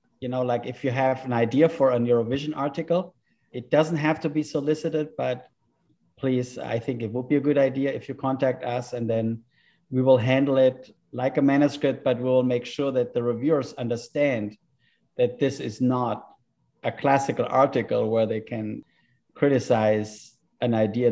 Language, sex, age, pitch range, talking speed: English, male, 50-69, 115-135 Hz, 175 wpm